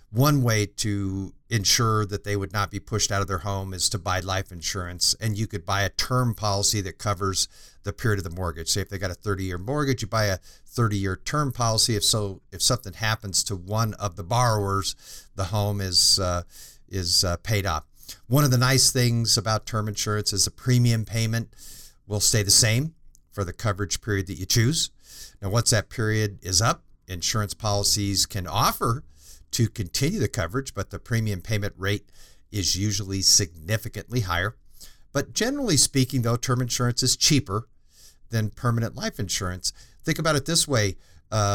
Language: English